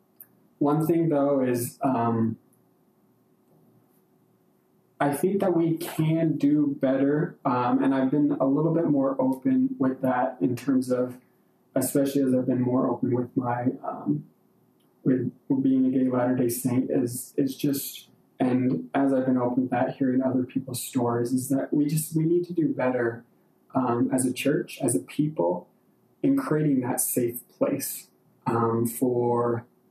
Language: English